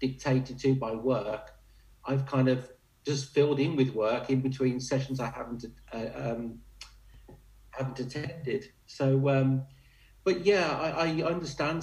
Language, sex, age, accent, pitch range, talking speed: English, male, 40-59, British, 125-145 Hz, 140 wpm